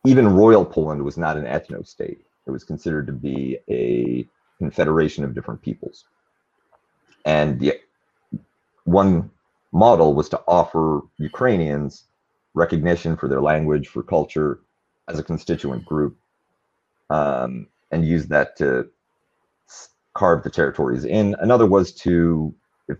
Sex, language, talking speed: male, English, 130 wpm